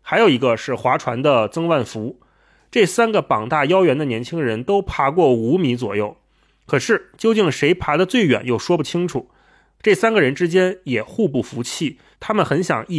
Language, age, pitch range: Chinese, 30-49, 125-190 Hz